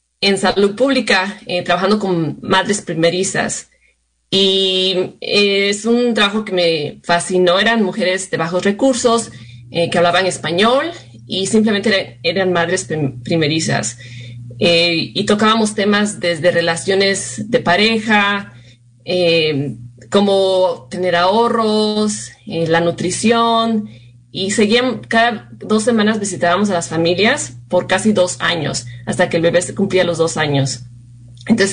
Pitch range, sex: 160-210 Hz, female